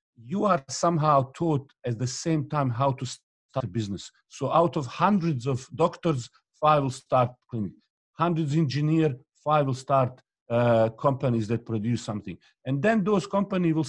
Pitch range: 120-155 Hz